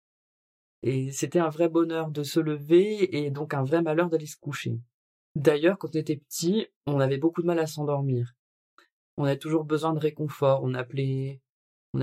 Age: 20-39